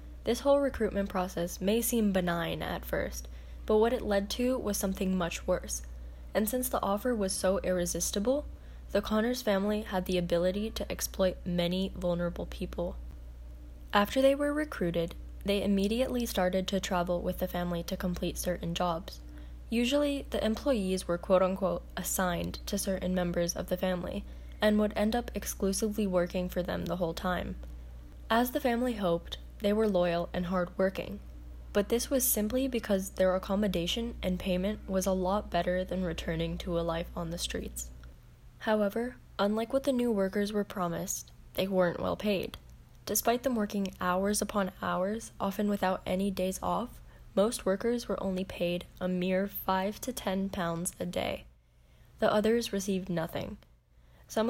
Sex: female